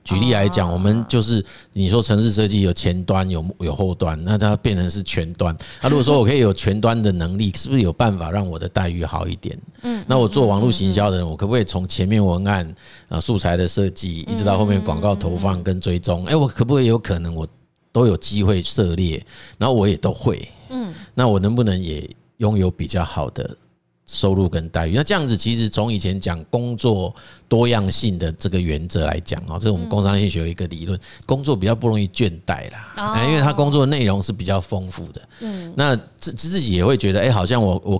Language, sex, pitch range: Chinese, male, 90-120 Hz